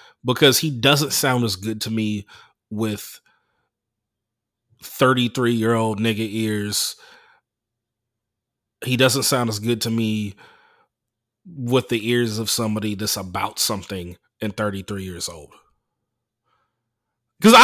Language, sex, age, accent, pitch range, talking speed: English, male, 30-49, American, 115-145 Hz, 110 wpm